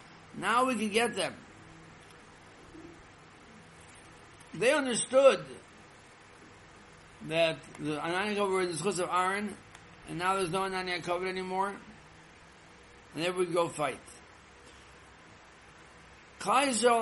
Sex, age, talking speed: male, 60-79, 100 wpm